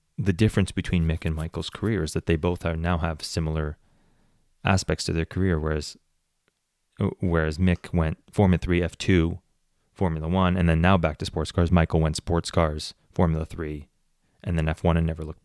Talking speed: 185 wpm